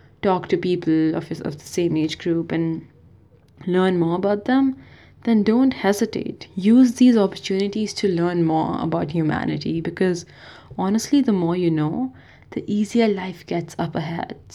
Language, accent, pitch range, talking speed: English, Indian, 170-205 Hz, 155 wpm